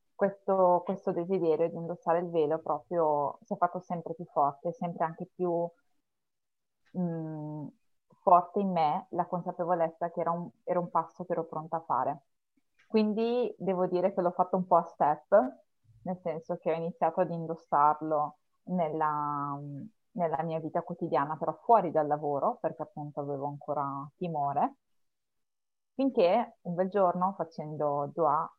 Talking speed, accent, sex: 150 wpm, native, female